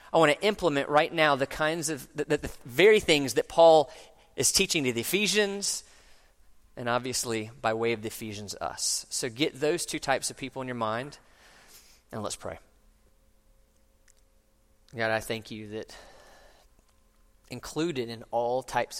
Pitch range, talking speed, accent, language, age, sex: 105-130 Hz, 160 wpm, American, English, 30-49, male